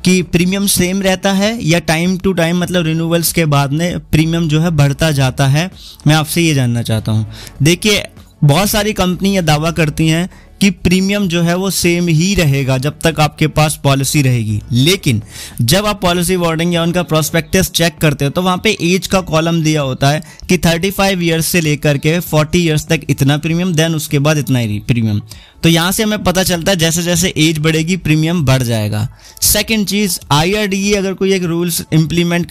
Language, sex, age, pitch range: Hindi, male, 30-49, 150-185 Hz